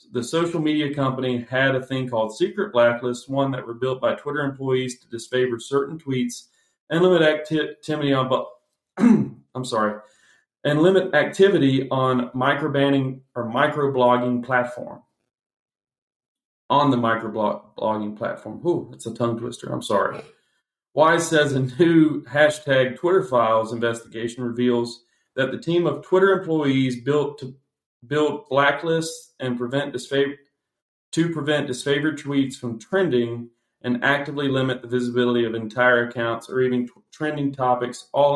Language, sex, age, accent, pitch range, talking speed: English, male, 40-59, American, 120-145 Hz, 140 wpm